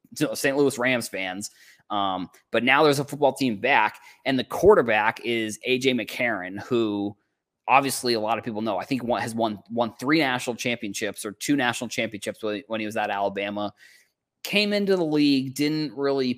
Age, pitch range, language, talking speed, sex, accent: 20-39, 115-145 Hz, English, 175 wpm, male, American